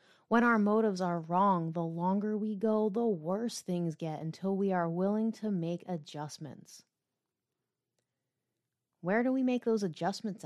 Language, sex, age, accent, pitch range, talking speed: English, female, 20-39, American, 170-215 Hz, 150 wpm